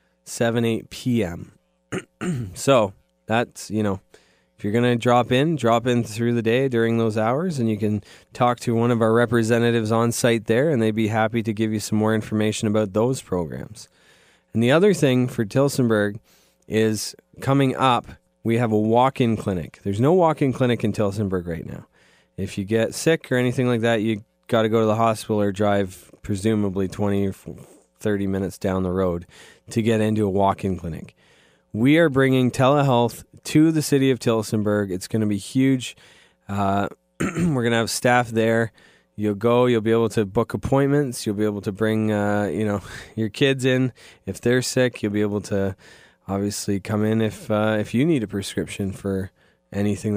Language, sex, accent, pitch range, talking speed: English, male, American, 100-120 Hz, 190 wpm